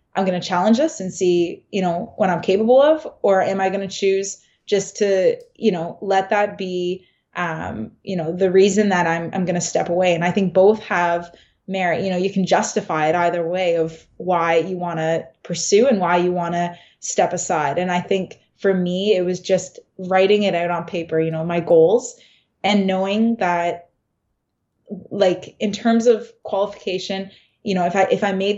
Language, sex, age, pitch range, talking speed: English, female, 20-39, 175-200 Hz, 205 wpm